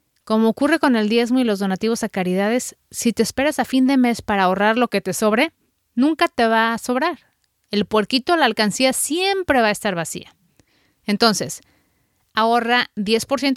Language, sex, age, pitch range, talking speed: Spanish, female, 30-49, 205-255 Hz, 180 wpm